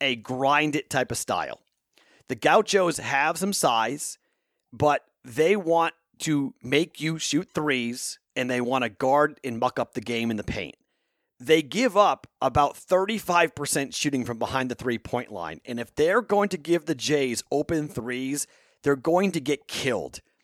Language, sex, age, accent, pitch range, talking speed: English, male, 40-59, American, 115-160 Hz, 165 wpm